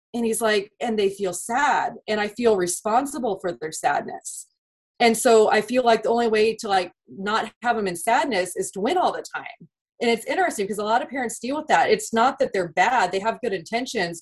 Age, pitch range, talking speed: 30-49, 190-235 Hz, 230 wpm